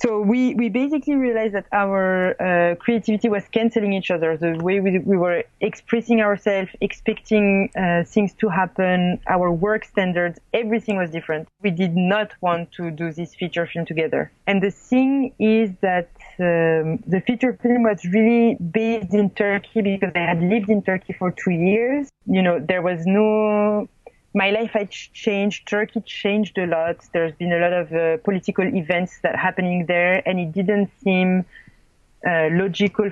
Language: English